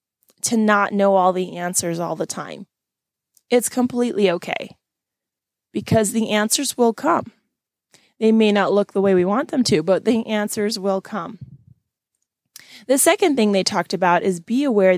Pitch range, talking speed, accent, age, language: 185-230 Hz, 165 wpm, American, 20-39, English